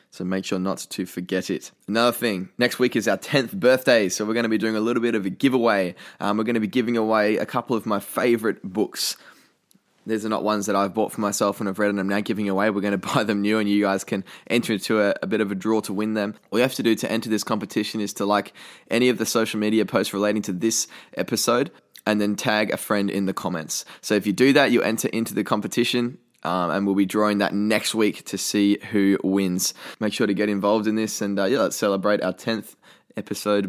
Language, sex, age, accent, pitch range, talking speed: English, male, 10-29, Australian, 100-110 Hz, 260 wpm